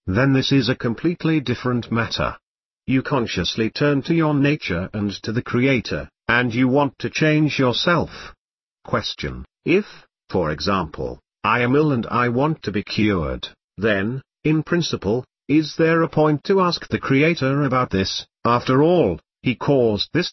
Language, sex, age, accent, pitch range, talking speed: English, male, 50-69, British, 105-150 Hz, 160 wpm